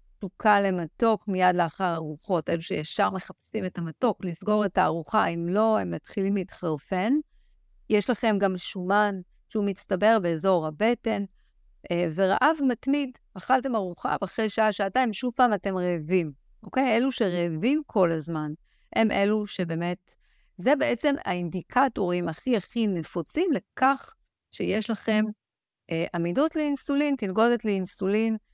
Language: Hebrew